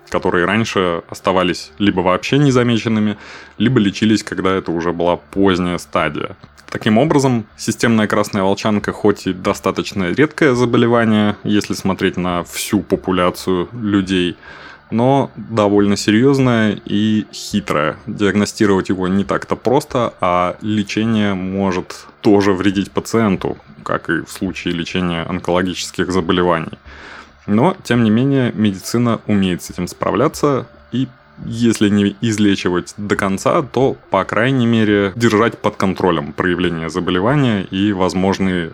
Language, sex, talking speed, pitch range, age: Russian, male, 120 wpm, 90-110 Hz, 20-39